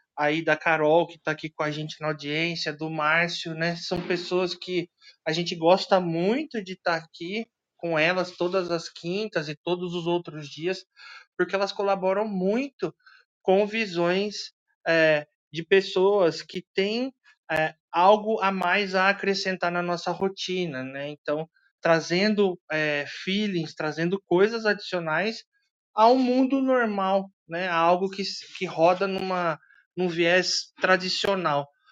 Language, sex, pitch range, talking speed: Portuguese, male, 165-200 Hz, 140 wpm